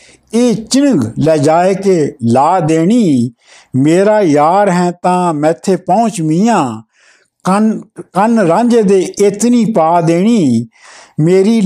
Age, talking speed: 60-79, 115 wpm